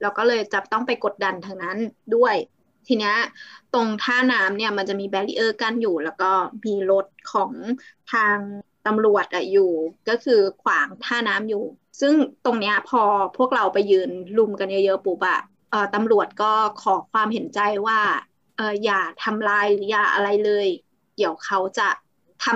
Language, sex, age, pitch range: Thai, female, 20-39, 200-240 Hz